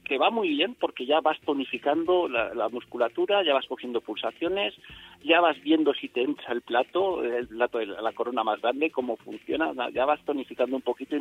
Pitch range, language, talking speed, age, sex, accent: 110-140 Hz, Spanish, 205 wpm, 50-69, male, Spanish